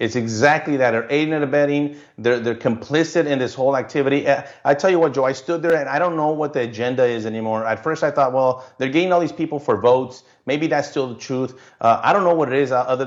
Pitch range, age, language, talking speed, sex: 120-145 Hz, 30-49, English, 260 wpm, male